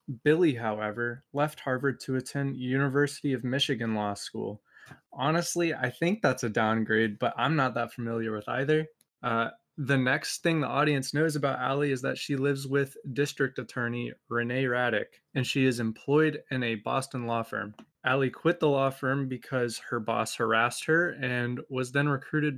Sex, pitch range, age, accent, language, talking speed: male, 125-155 Hz, 20-39, American, English, 175 wpm